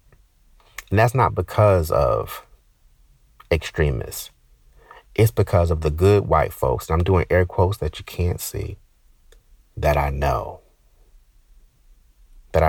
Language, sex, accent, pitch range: English, male, American, 75-95 Hz